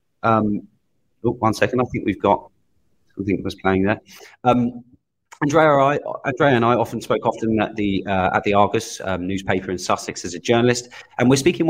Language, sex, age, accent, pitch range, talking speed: English, male, 30-49, British, 95-120 Hz, 190 wpm